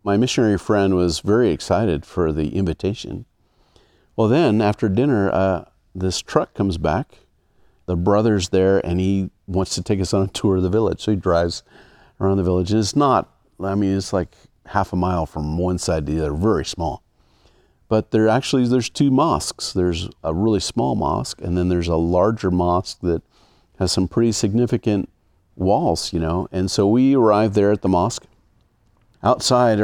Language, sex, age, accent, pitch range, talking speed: English, male, 50-69, American, 90-110 Hz, 185 wpm